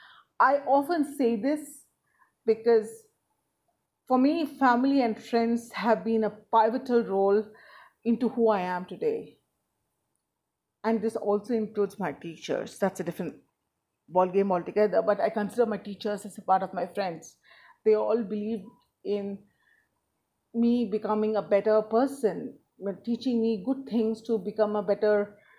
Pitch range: 210-260 Hz